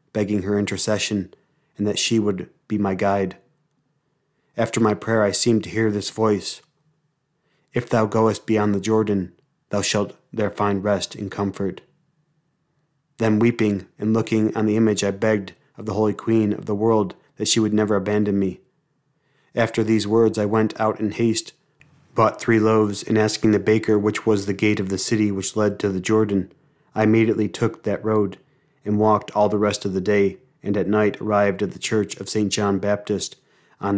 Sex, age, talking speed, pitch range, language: male, 30-49, 185 wpm, 105-115 Hz, English